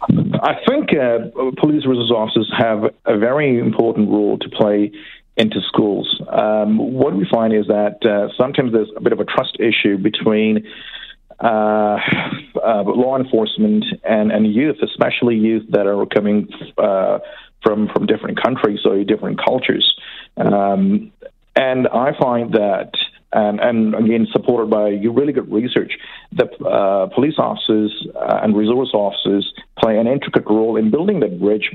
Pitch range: 105-115 Hz